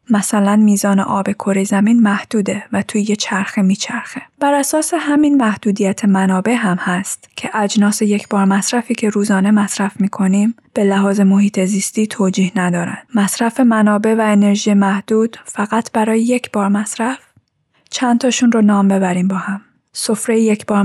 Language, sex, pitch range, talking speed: Persian, female, 195-225 Hz, 155 wpm